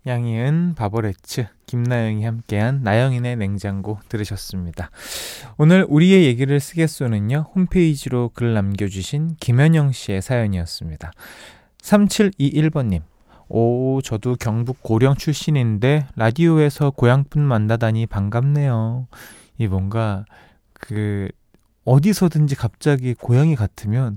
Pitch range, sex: 110-145 Hz, male